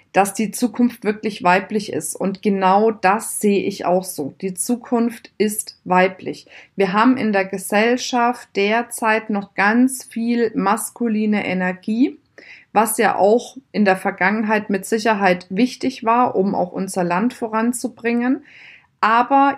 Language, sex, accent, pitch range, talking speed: German, female, German, 190-230 Hz, 135 wpm